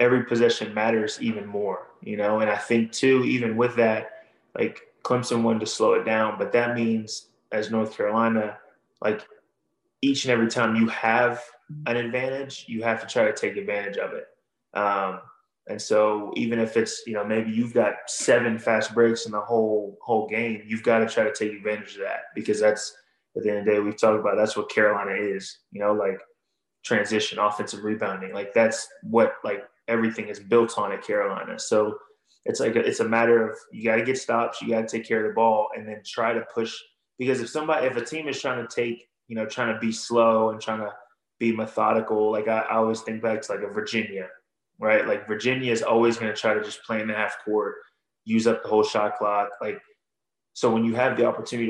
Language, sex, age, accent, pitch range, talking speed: English, male, 20-39, American, 105-120 Hz, 220 wpm